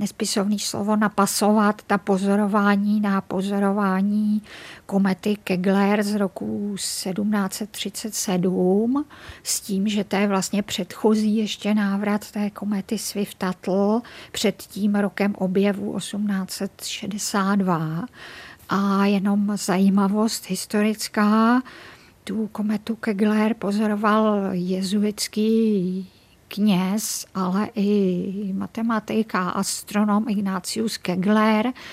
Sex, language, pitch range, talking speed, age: female, Czech, 195-215 Hz, 85 wpm, 50-69